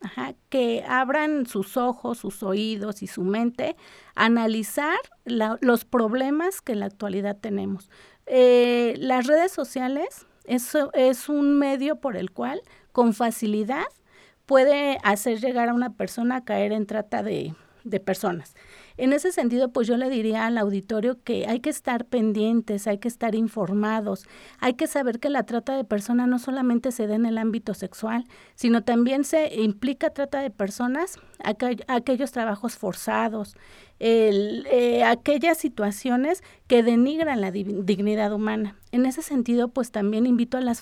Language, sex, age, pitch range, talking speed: Spanish, female, 40-59, 210-260 Hz, 160 wpm